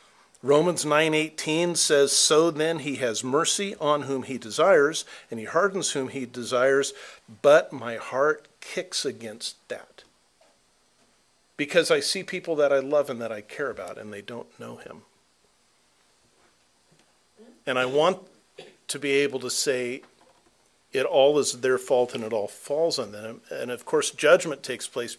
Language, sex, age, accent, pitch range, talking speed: English, male, 50-69, American, 125-160 Hz, 155 wpm